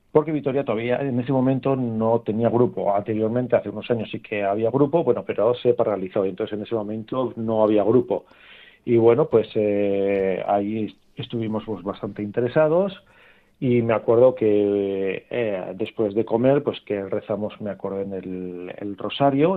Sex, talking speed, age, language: male, 165 wpm, 40-59, Spanish